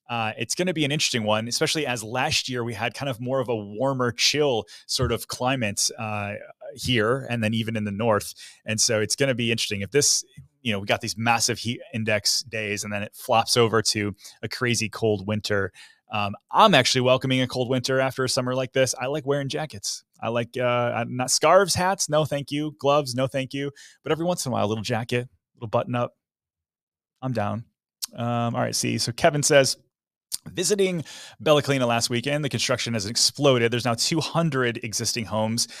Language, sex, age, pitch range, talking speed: English, male, 20-39, 110-130 Hz, 210 wpm